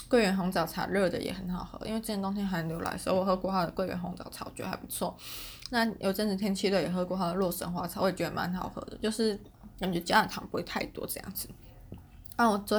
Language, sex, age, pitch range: Chinese, female, 20-39, 180-215 Hz